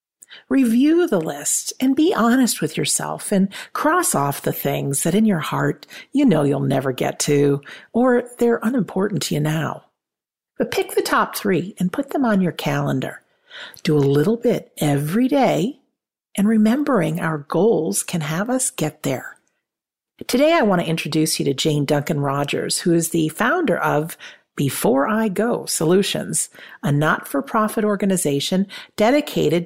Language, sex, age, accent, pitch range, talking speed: English, female, 50-69, American, 160-245 Hz, 160 wpm